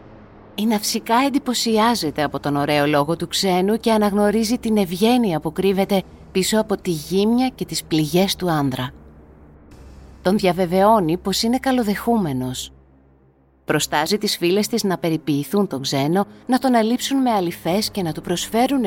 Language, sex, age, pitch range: Greek, female, 30-49, 155-230 Hz